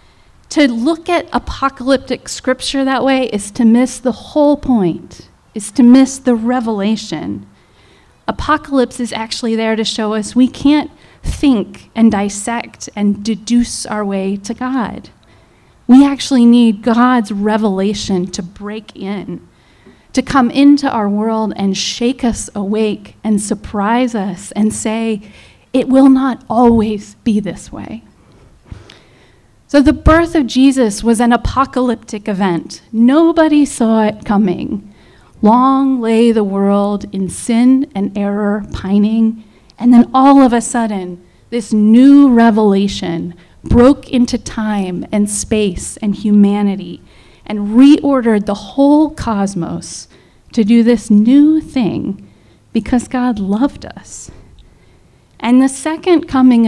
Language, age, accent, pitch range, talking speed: English, 30-49, American, 205-255 Hz, 130 wpm